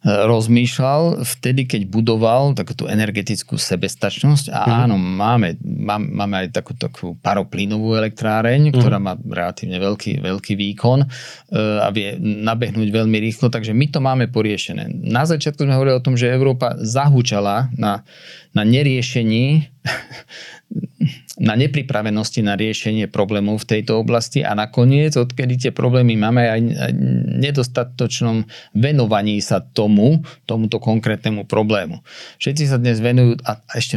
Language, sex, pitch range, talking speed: Slovak, male, 110-130 Hz, 125 wpm